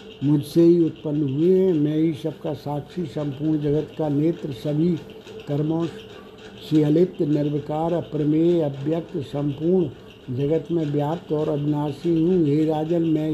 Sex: male